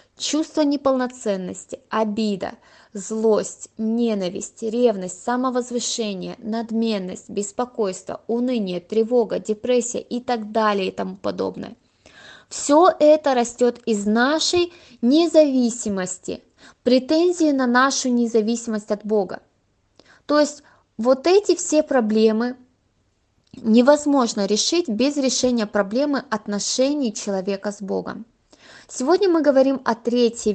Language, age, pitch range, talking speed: Russian, 20-39, 215-265 Hz, 100 wpm